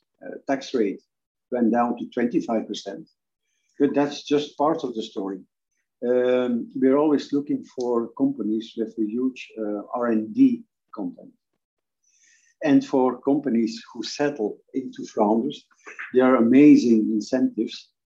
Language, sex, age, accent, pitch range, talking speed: English, male, 50-69, Dutch, 115-145 Hz, 120 wpm